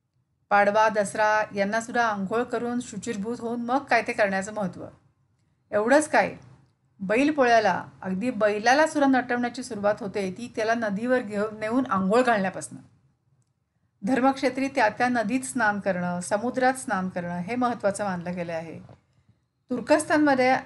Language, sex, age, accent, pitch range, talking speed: Marathi, female, 40-59, native, 150-240 Hz, 120 wpm